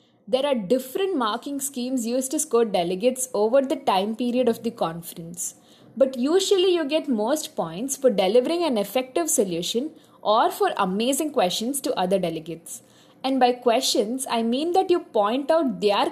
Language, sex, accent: English, female, Indian